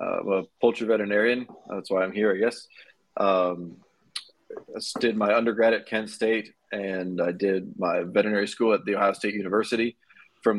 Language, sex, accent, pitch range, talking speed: English, male, American, 100-110 Hz, 170 wpm